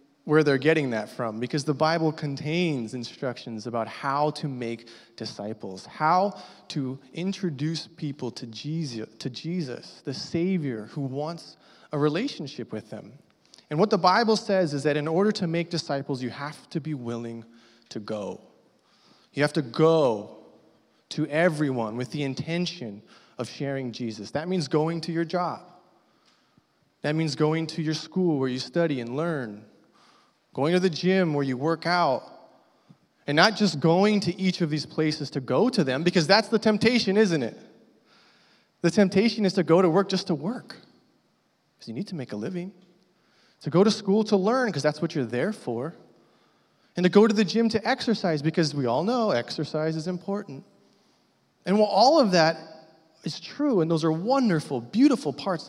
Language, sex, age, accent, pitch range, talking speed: English, male, 20-39, American, 135-180 Hz, 175 wpm